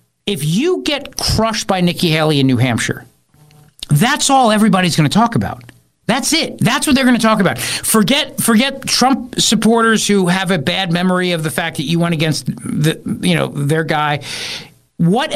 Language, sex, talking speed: English, male, 190 wpm